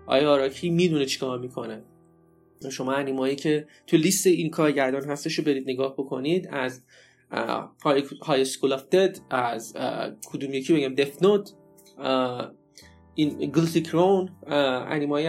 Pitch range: 135-170 Hz